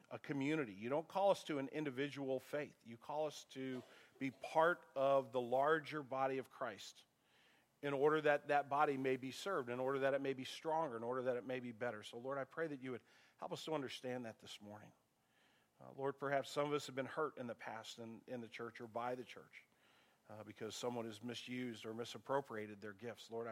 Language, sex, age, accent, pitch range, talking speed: English, male, 50-69, American, 125-160 Hz, 225 wpm